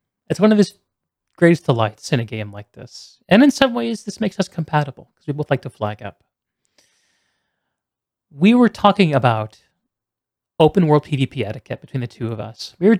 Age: 30-49